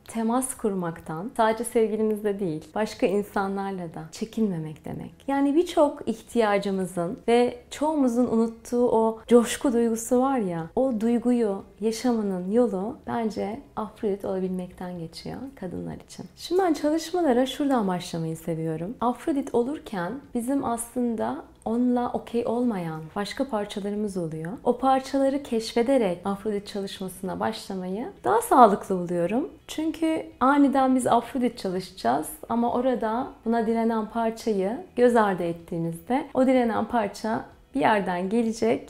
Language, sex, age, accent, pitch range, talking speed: Turkish, female, 30-49, native, 195-260 Hz, 115 wpm